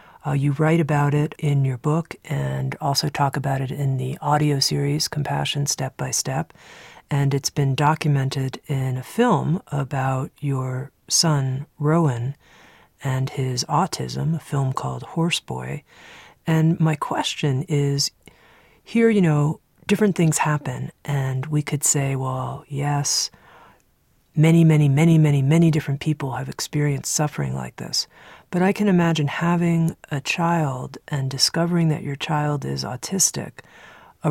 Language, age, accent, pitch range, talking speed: English, 40-59, American, 135-160 Hz, 145 wpm